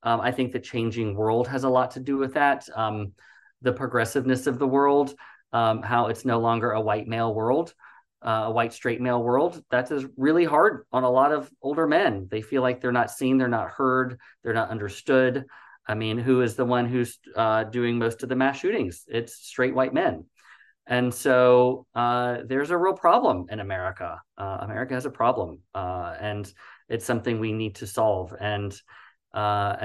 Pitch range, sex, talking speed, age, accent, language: 115-135 Hz, male, 195 wpm, 30-49, American, English